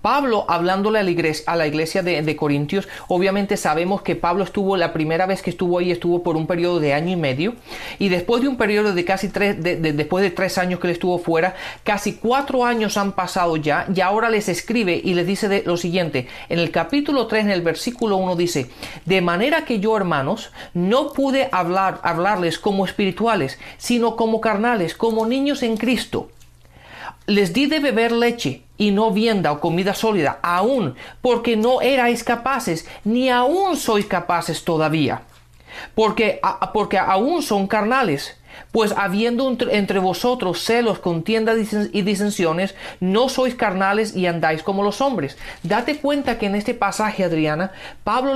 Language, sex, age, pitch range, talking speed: Spanish, male, 40-59, 175-235 Hz, 165 wpm